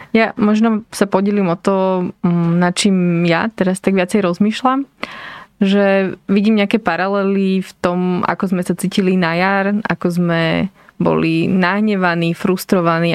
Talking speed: 135 wpm